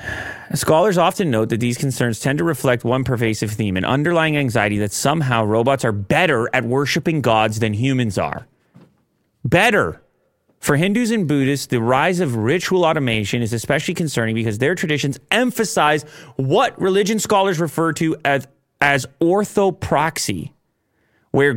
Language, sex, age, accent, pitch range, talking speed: English, male, 30-49, American, 125-175 Hz, 145 wpm